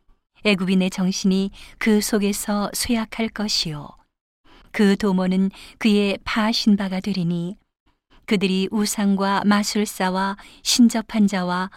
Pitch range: 180-210 Hz